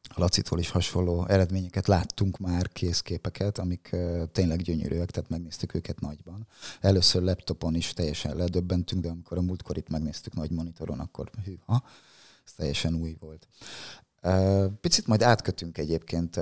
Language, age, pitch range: Hungarian, 30-49, 80-95 Hz